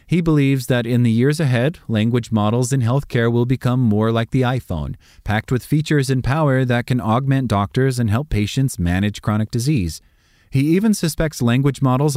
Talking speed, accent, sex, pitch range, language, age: 185 wpm, American, male, 100-130 Hz, English, 30-49